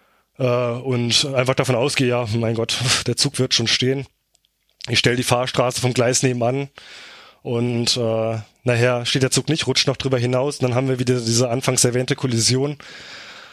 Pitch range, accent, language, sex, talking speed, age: 120-140 Hz, German, German, male, 175 wpm, 20-39